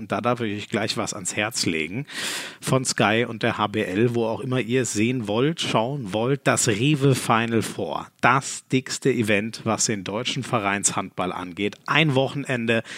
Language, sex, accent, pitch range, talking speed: German, male, German, 110-140 Hz, 175 wpm